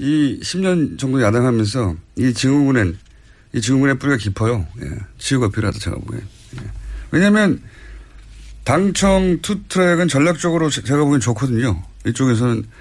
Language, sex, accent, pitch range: Korean, male, native, 100-140 Hz